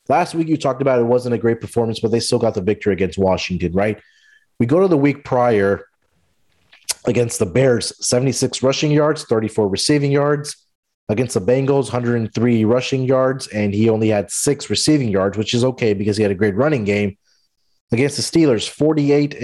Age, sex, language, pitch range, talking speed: 30-49, male, English, 110-140 Hz, 190 wpm